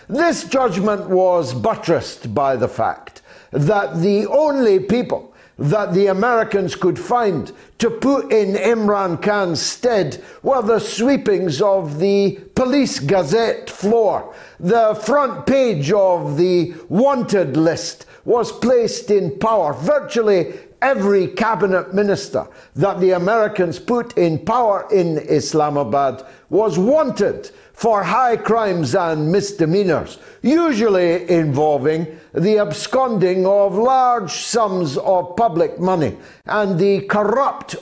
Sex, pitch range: male, 165-230 Hz